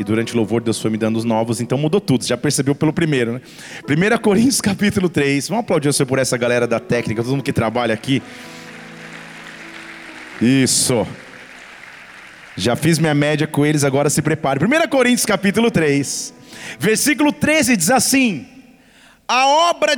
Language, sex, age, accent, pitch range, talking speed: Portuguese, male, 40-59, Brazilian, 165-265 Hz, 165 wpm